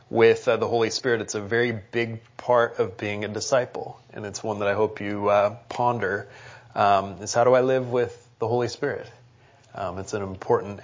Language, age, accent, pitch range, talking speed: English, 30-49, American, 115-145 Hz, 205 wpm